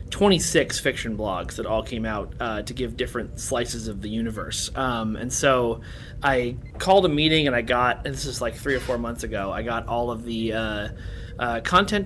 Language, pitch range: English, 115-135 Hz